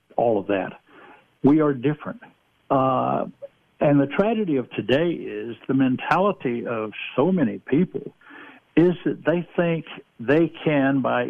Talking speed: 140 wpm